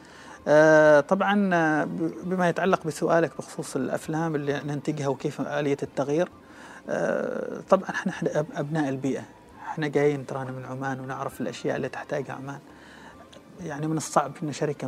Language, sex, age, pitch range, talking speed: Arabic, male, 30-49, 140-185 Hz, 130 wpm